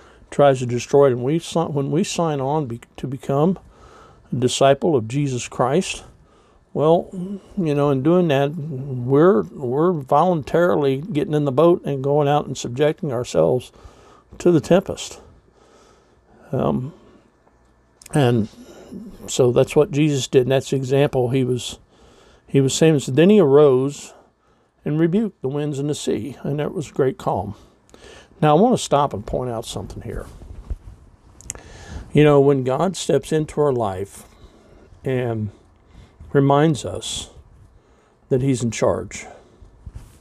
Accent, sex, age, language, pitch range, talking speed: American, male, 60-79, English, 115-150 Hz, 145 wpm